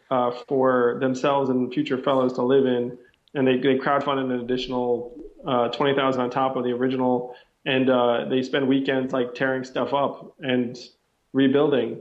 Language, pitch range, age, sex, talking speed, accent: English, 125-140 Hz, 20-39, male, 170 wpm, American